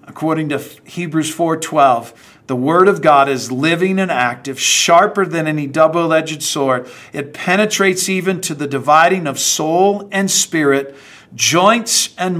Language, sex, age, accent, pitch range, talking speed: English, male, 50-69, American, 140-170 Hz, 140 wpm